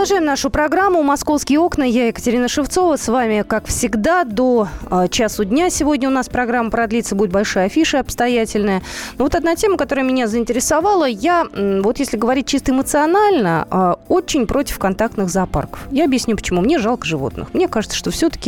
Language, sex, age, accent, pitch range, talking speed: Russian, female, 20-39, native, 195-285 Hz, 160 wpm